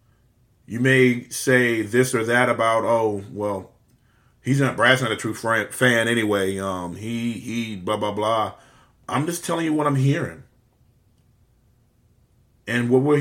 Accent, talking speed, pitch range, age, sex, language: American, 155 wpm, 110-130 Hz, 30-49, male, English